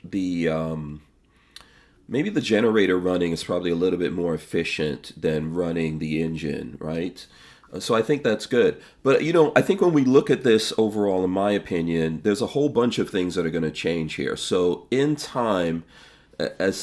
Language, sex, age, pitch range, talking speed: English, male, 40-59, 85-110 Hz, 190 wpm